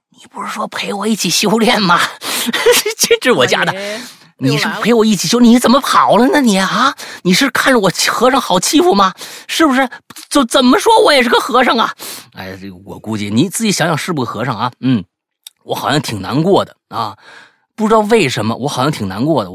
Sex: male